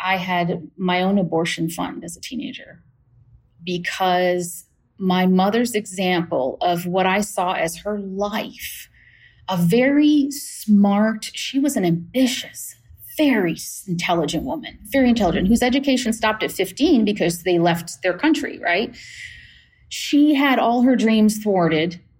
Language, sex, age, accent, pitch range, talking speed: English, female, 30-49, American, 185-255 Hz, 130 wpm